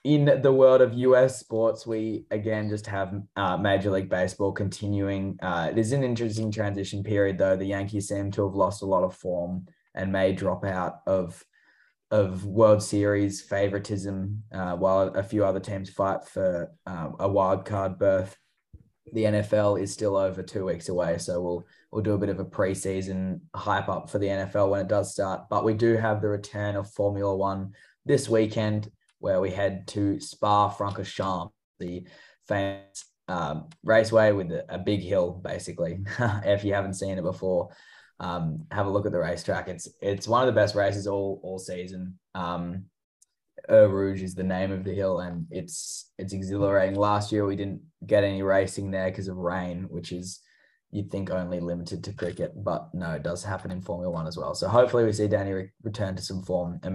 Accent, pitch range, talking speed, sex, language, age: Australian, 95-105 Hz, 190 wpm, male, English, 10-29